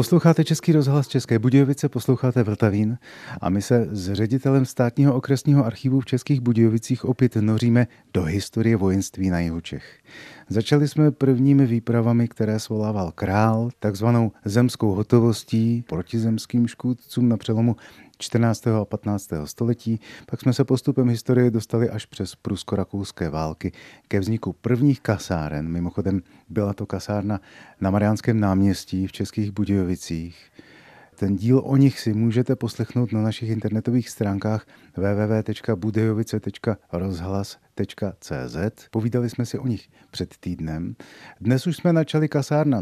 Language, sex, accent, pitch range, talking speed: Czech, male, native, 105-130 Hz, 130 wpm